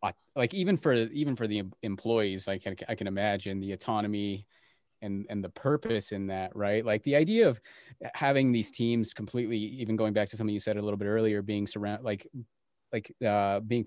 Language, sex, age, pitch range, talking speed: English, male, 20-39, 100-115 Hz, 200 wpm